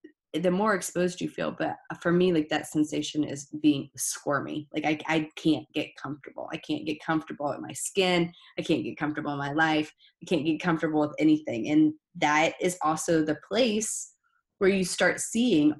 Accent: American